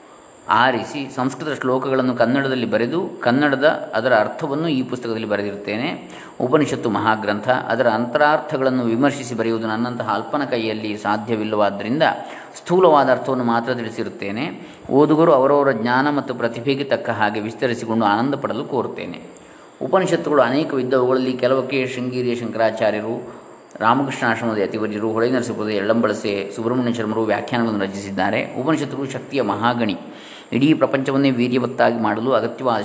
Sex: male